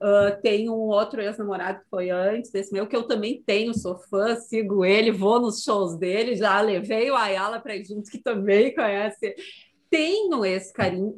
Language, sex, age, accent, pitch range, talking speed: Portuguese, female, 30-49, Brazilian, 205-285 Hz, 190 wpm